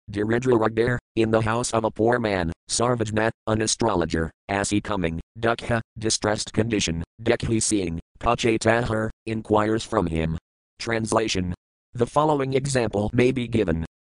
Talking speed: 130 wpm